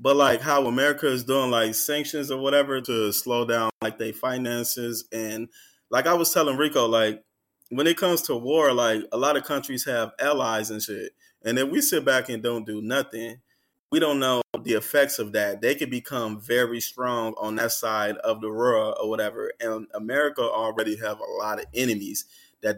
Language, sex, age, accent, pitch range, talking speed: English, male, 20-39, American, 110-135 Hz, 200 wpm